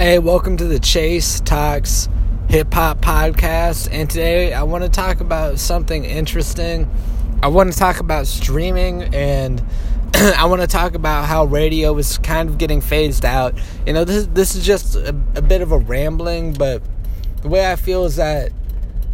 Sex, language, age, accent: male, English, 20-39, American